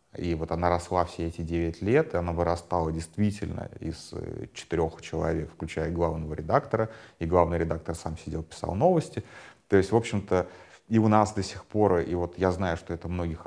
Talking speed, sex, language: 185 wpm, male, Russian